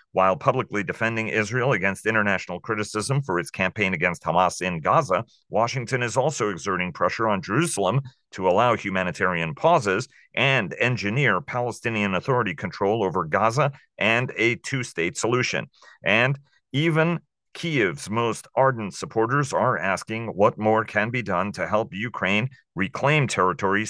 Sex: male